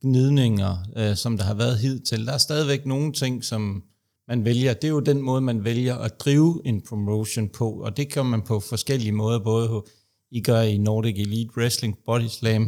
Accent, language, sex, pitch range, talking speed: native, Danish, male, 110-130 Hz, 205 wpm